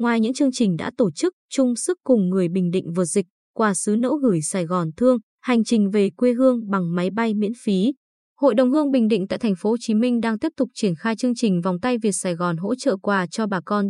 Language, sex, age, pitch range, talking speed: Vietnamese, female, 20-39, 195-250 Hz, 260 wpm